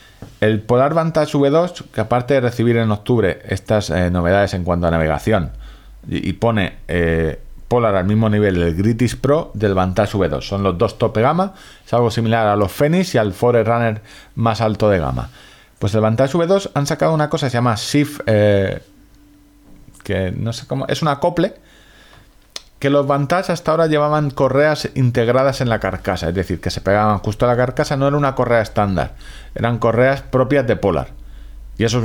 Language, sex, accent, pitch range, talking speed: Spanish, male, Spanish, 100-140 Hz, 195 wpm